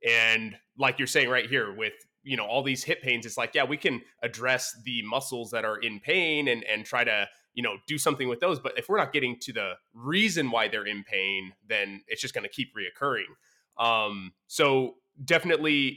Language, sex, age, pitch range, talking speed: English, male, 20-39, 115-135 Hz, 215 wpm